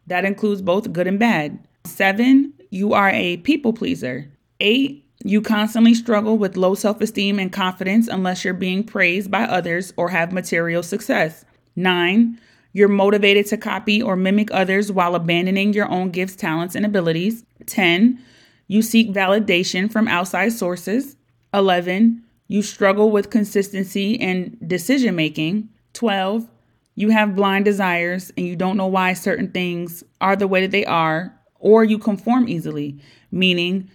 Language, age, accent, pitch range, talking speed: English, 30-49, American, 180-215 Hz, 150 wpm